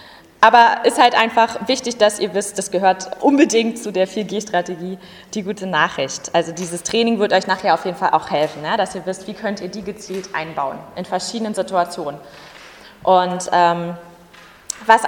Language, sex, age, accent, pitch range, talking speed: German, female, 20-39, German, 200-255 Hz, 170 wpm